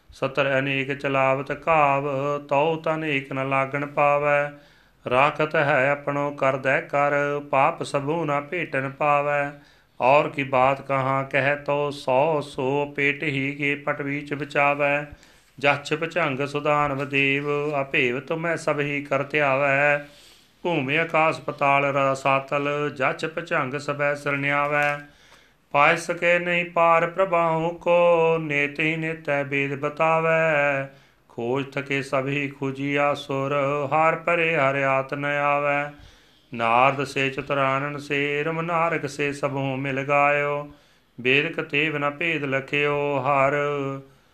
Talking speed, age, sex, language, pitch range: 120 wpm, 40-59, male, Punjabi, 140-155 Hz